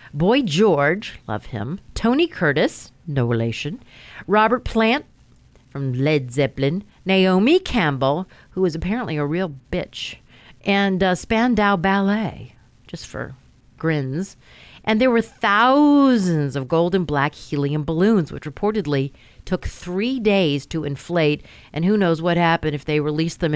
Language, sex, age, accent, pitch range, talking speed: English, female, 50-69, American, 145-195 Hz, 140 wpm